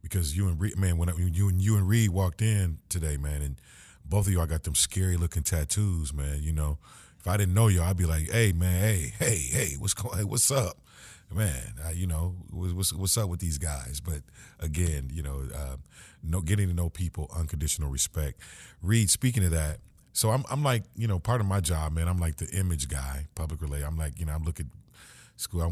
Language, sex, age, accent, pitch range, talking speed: English, male, 40-59, American, 75-100 Hz, 230 wpm